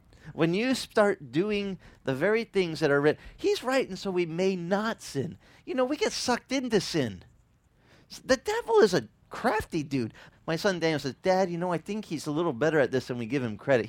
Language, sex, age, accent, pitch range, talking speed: English, male, 40-59, American, 140-230 Hz, 220 wpm